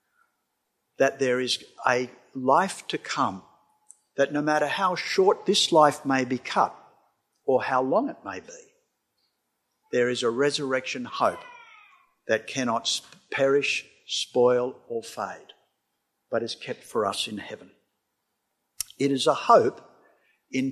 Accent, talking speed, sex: Australian, 135 wpm, male